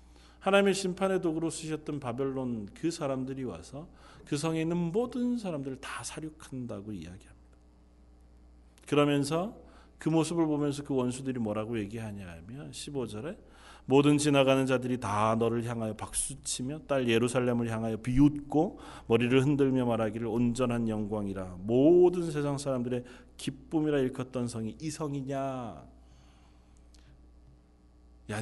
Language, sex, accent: Korean, male, native